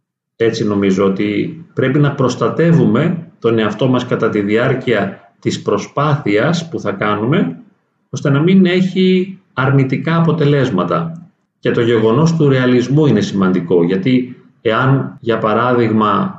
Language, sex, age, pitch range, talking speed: Greek, male, 40-59, 115-165 Hz, 125 wpm